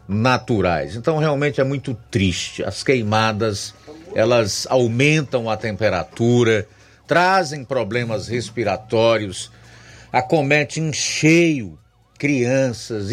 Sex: male